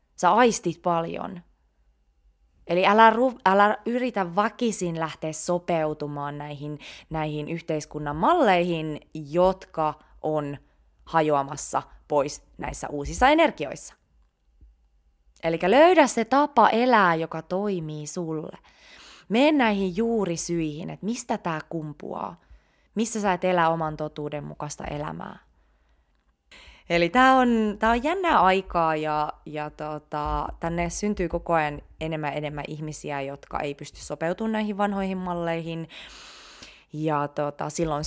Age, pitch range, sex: 20-39, 150-205 Hz, female